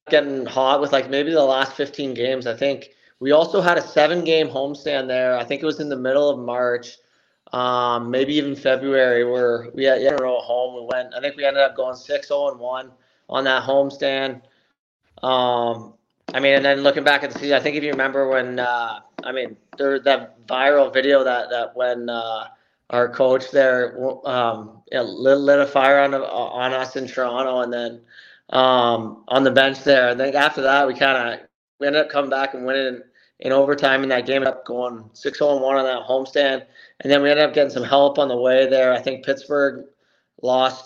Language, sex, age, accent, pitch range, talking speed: English, male, 30-49, American, 125-140 Hz, 210 wpm